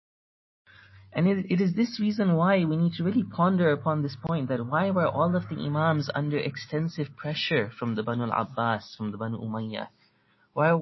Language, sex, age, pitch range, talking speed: English, male, 30-49, 130-160 Hz, 185 wpm